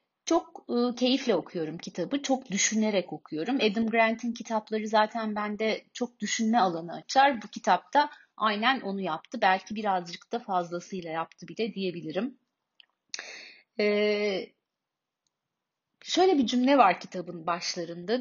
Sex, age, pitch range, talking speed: female, 30-49, 180-230 Hz, 120 wpm